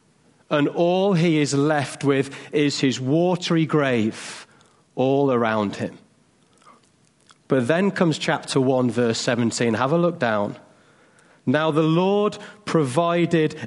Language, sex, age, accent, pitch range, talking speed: English, male, 40-59, British, 145-185 Hz, 125 wpm